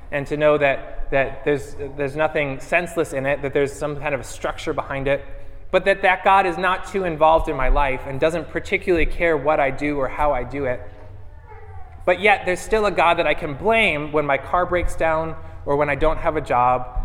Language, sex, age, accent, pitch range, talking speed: English, male, 20-39, American, 115-160 Hz, 230 wpm